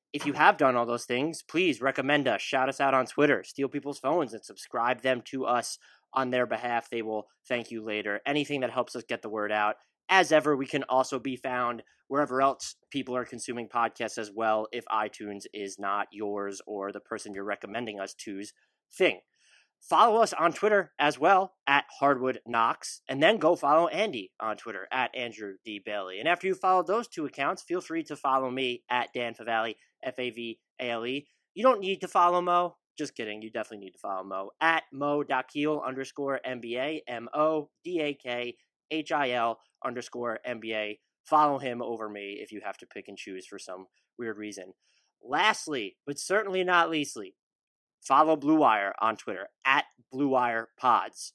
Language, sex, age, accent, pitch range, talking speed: English, male, 20-39, American, 115-145 Hz, 175 wpm